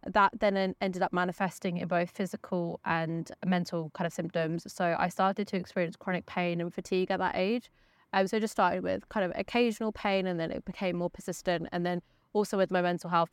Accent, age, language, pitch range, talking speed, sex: British, 20-39, English, 170-195 Hz, 210 wpm, female